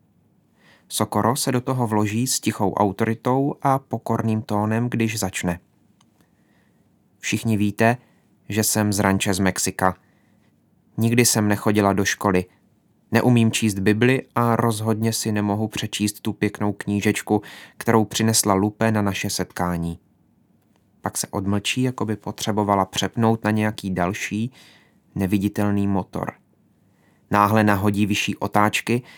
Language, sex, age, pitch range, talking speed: Czech, male, 30-49, 100-115 Hz, 120 wpm